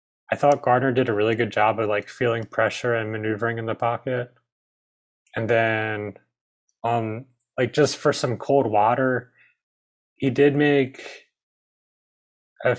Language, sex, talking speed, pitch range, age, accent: English, male, 140 wpm, 105-125 Hz, 20-39, American